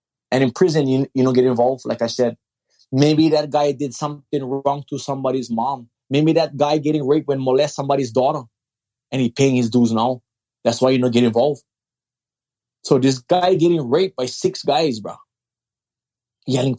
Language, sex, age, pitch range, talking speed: English, male, 20-39, 120-160 Hz, 180 wpm